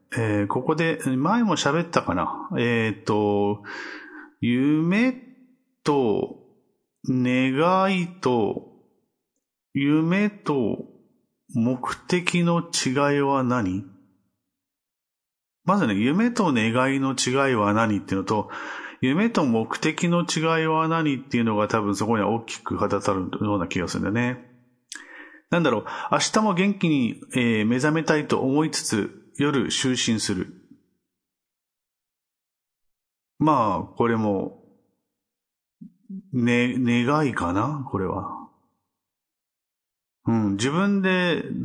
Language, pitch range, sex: Japanese, 115-175 Hz, male